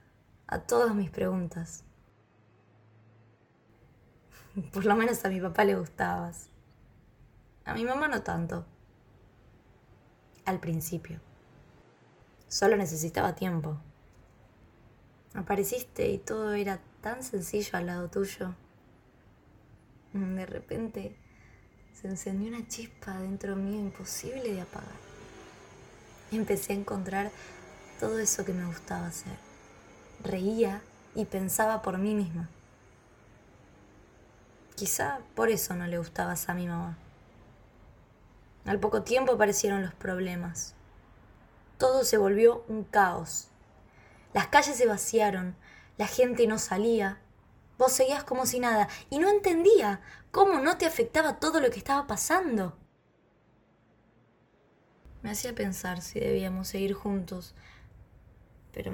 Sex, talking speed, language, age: female, 115 wpm, Spanish, 20-39